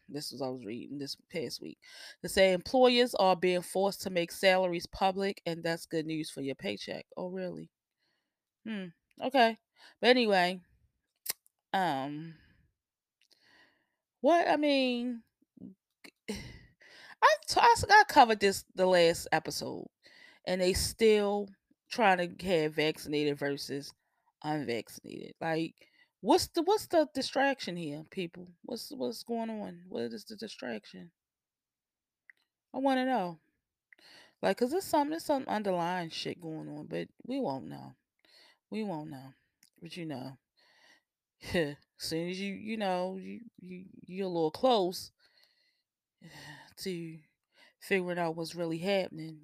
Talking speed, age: 135 wpm, 20-39